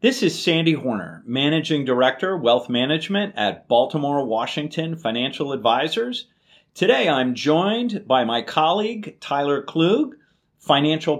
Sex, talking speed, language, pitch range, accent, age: male, 120 wpm, English, 120-165 Hz, American, 40-59